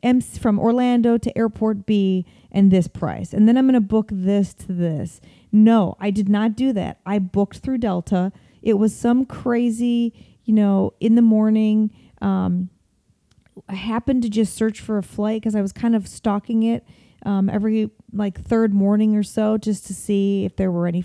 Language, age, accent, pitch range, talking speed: English, 30-49, American, 195-230 Hz, 190 wpm